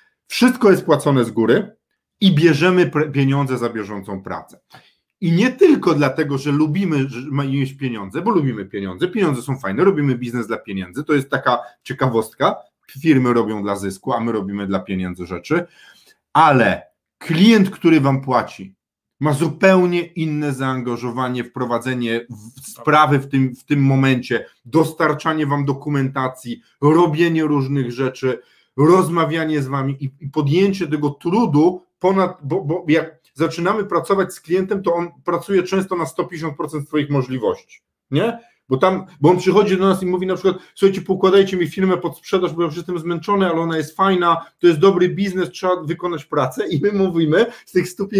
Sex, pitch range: male, 135-185 Hz